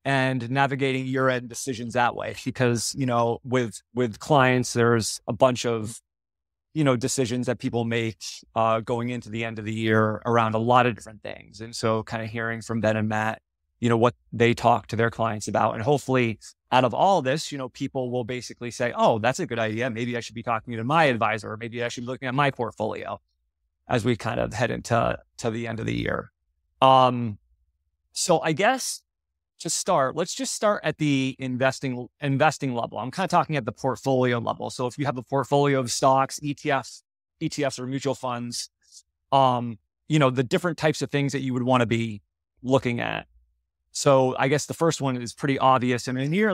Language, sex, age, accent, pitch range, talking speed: English, male, 30-49, American, 115-135 Hz, 210 wpm